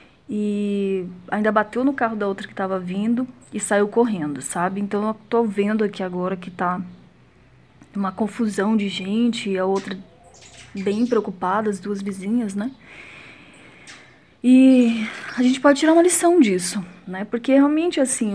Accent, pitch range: Brazilian, 195-235 Hz